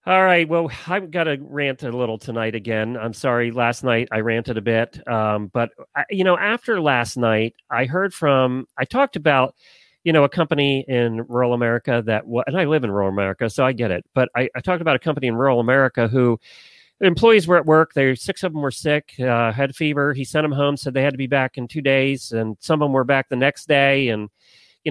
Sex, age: male, 40-59